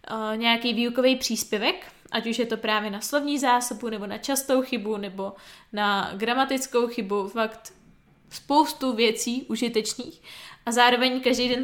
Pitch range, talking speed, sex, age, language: 225-255 Hz, 140 wpm, female, 20-39, Czech